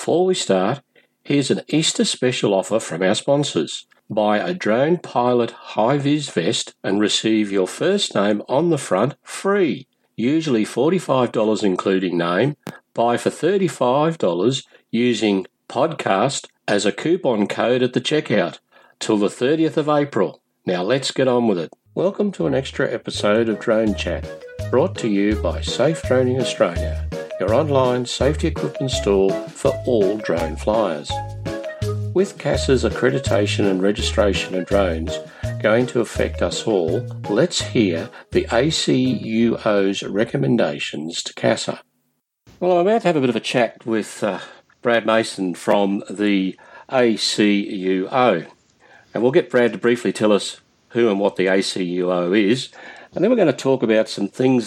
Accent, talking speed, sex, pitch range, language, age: Australian, 150 wpm, male, 100-130 Hz, English, 50-69